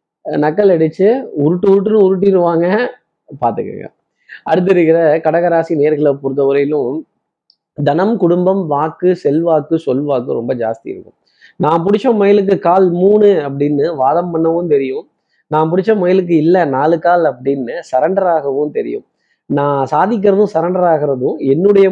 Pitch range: 150-195 Hz